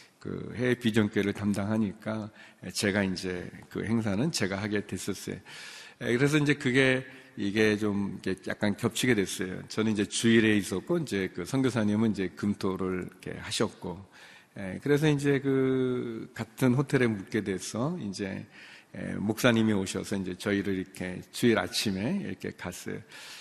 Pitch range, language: 100-130 Hz, Korean